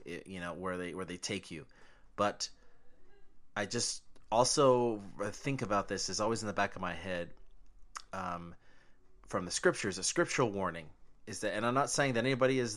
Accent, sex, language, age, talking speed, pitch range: American, male, English, 30-49, 185 wpm, 95-120 Hz